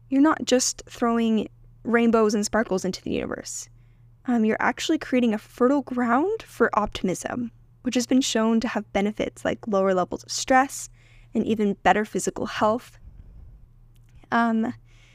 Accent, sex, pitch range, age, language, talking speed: American, female, 170-235 Hz, 10-29, English, 145 wpm